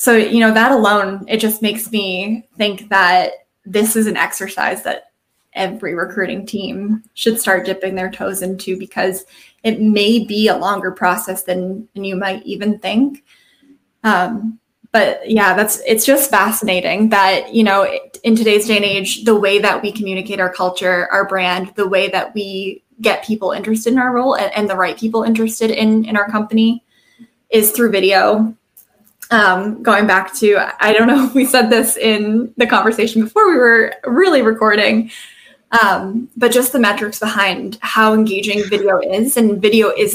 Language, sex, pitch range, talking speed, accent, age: English, female, 195-225 Hz, 175 wpm, American, 20-39